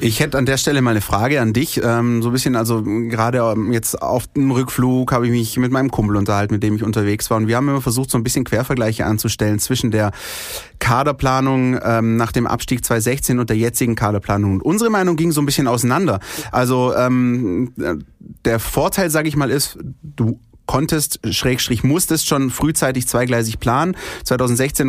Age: 30-49